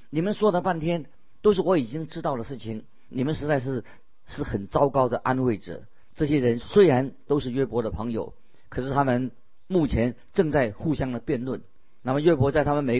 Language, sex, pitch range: Chinese, male, 120-160 Hz